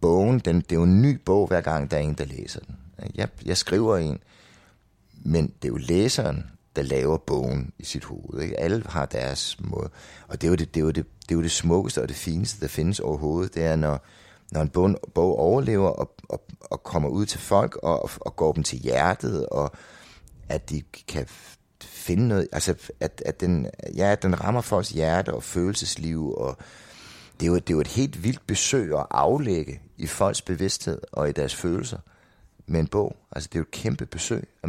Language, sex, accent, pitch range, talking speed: Danish, male, native, 75-95 Hz, 215 wpm